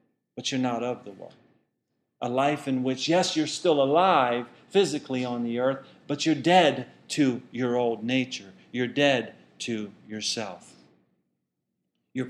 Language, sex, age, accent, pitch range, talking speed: English, male, 40-59, American, 115-140 Hz, 145 wpm